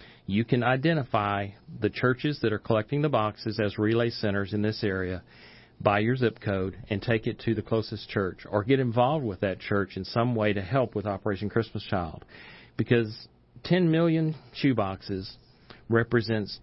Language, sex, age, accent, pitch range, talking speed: English, male, 40-59, American, 100-125 Hz, 175 wpm